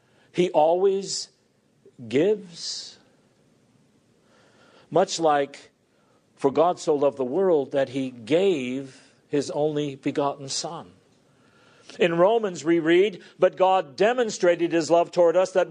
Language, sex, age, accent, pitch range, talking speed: English, male, 50-69, American, 155-205 Hz, 115 wpm